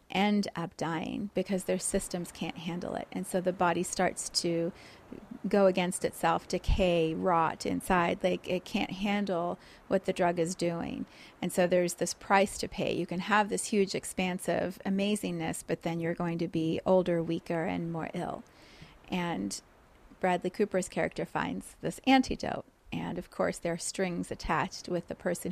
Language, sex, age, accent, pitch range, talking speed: English, female, 30-49, American, 180-205 Hz, 170 wpm